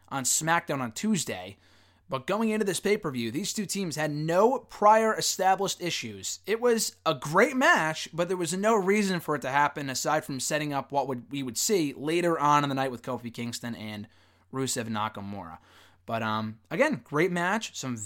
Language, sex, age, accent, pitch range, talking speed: English, male, 20-39, American, 115-190 Hz, 185 wpm